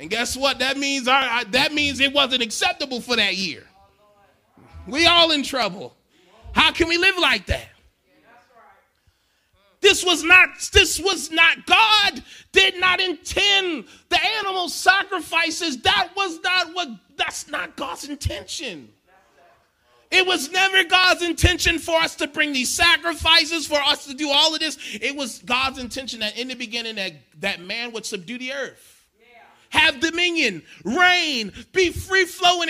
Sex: male